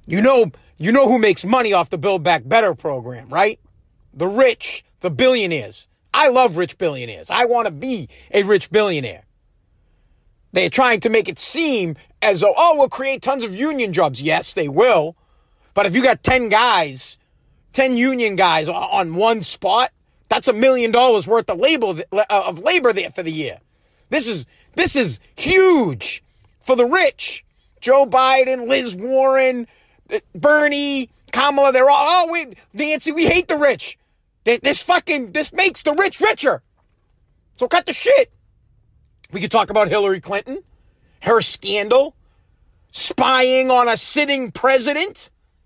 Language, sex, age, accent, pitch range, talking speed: English, male, 40-59, American, 215-280 Hz, 155 wpm